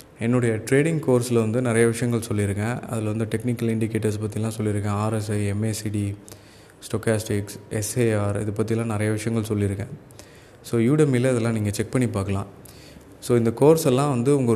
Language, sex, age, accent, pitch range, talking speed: Tamil, male, 20-39, native, 105-120 Hz, 145 wpm